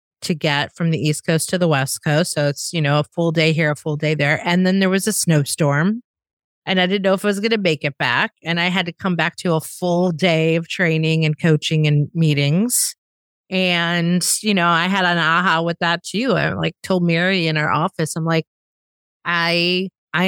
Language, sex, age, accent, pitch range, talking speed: English, female, 30-49, American, 155-185 Hz, 230 wpm